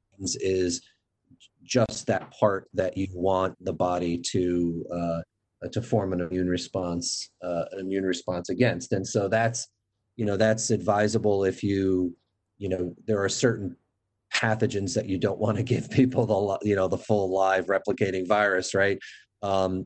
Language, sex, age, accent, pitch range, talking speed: English, male, 30-49, American, 90-105 Hz, 160 wpm